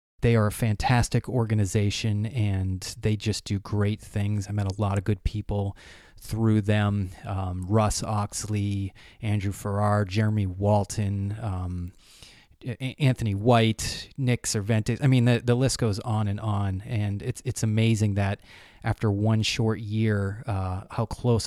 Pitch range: 100-120 Hz